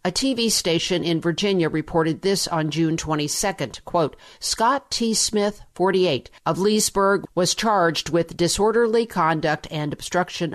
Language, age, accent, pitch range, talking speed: English, 50-69, American, 160-205 Hz, 135 wpm